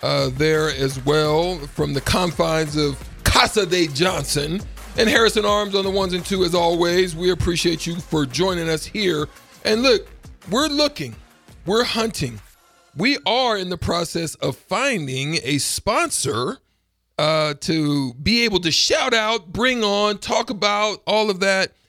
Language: English